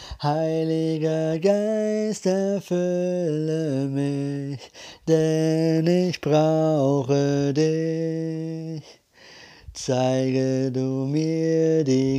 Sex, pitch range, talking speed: male, 140-165 Hz, 60 wpm